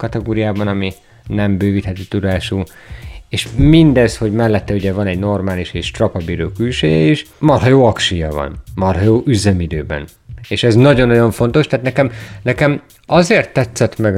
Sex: male